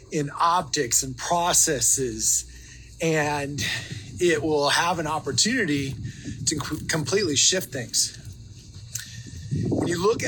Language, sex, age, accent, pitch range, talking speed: English, male, 30-49, American, 120-160 Hz, 100 wpm